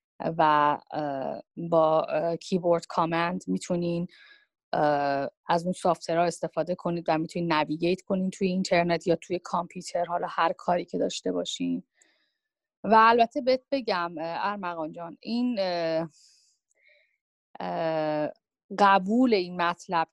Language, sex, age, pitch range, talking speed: Persian, female, 30-49, 165-205 Hz, 105 wpm